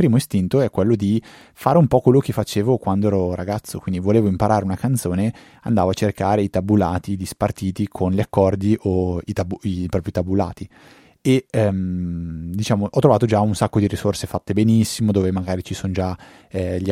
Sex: male